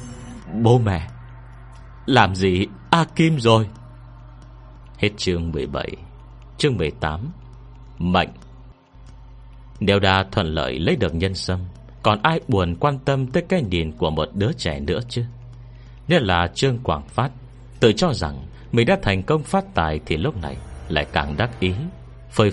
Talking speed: 150 wpm